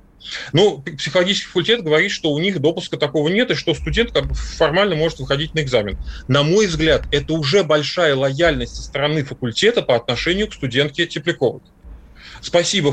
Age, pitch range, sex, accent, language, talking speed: 30-49, 135-175 Hz, male, native, Russian, 165 wpm